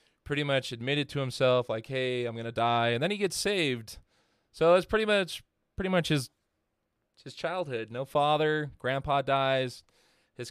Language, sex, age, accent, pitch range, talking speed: English, male, 20-39, American, 120-155 Hz, 165 wpm